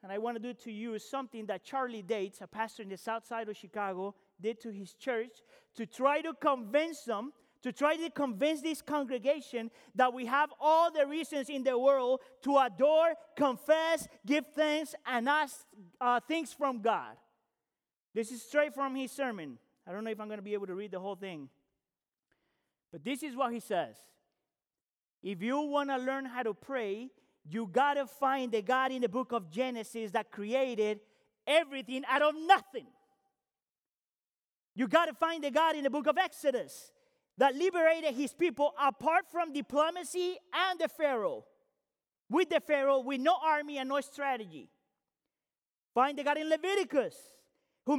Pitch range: 240-310 Hz